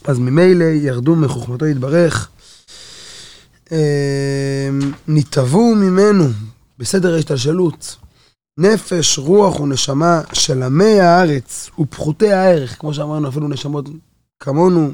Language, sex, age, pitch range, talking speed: Hebrew, male, 20-39, 135-170 Hz, 90 wpm